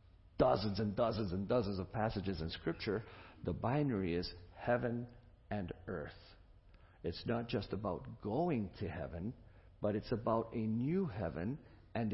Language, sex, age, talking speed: English, male, 50-69, 145 wpm